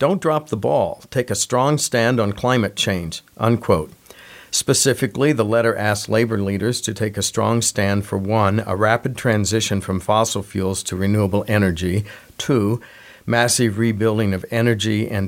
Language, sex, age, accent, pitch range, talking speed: English, male, 50-69, American, 105-125 Hz, 155 wpm